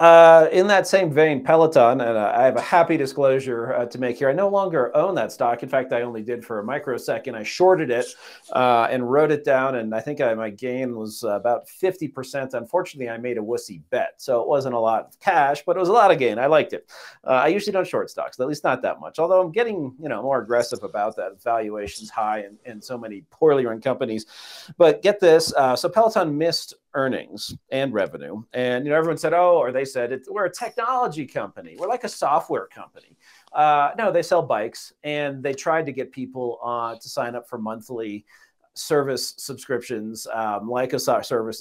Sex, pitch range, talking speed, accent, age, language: male, 115-165 Hz, 220 wpm, American, 40-59, English